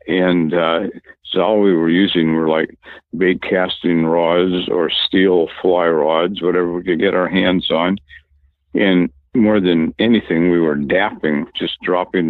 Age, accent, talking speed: 60-79, American, 155 wpm